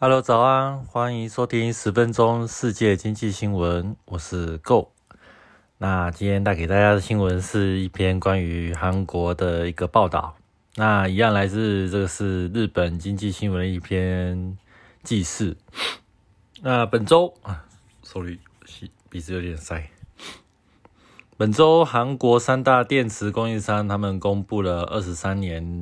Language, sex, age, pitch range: Chinese, male, 20-39, 95-115 Hz